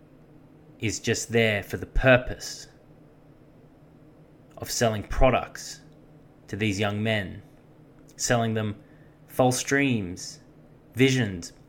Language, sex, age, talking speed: English, male, 20-39, 90 wpm